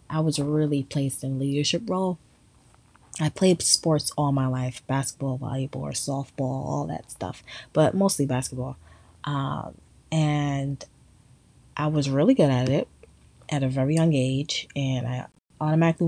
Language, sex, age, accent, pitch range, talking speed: English, female, 20-39, American, 130-160 Hz, 140 wpm